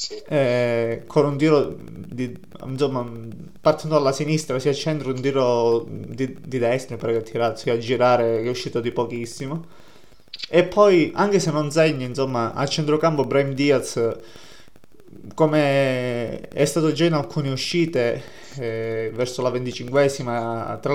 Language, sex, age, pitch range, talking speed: Italian, male, 20-39, 125-150 Hz, 130 wpm